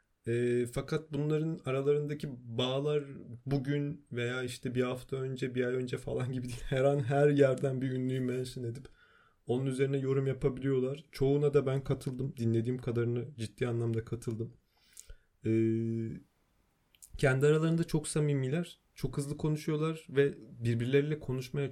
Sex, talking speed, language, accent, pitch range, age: male, 135 wpm, Turkish, native, 115-140 Hz, 30-49